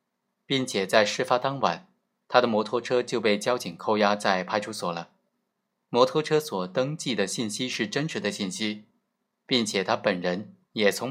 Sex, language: male, Chinese